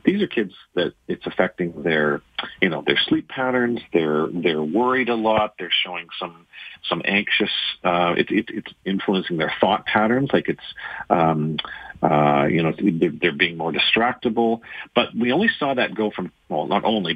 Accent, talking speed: American, 170 wpm